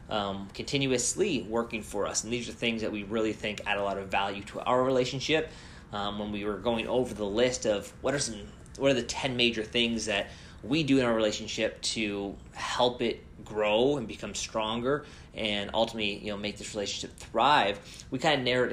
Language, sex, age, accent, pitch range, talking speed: English, male, 20-39, American, 100-120 Hz, 210 wpm